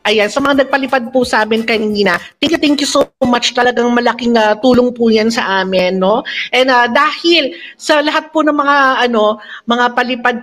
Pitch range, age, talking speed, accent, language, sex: 200-270 Hz, 50-69, 200 wpm, native, Filipino, female